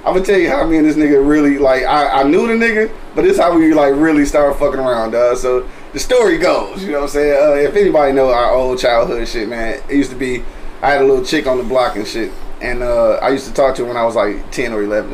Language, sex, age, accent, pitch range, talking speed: English, male, 20-39, American, 130-185 Hz, 295 wpm